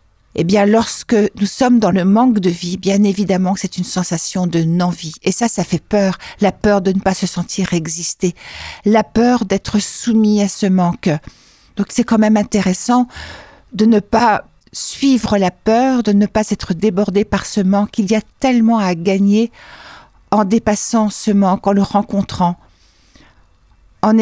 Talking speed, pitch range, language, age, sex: 175 wpm, 185-225 Hz, French, 60-79, female